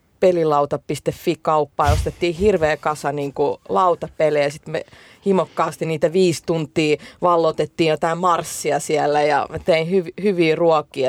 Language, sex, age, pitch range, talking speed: Finnish, female, 30-49, 150-180 Hz, 110 wpm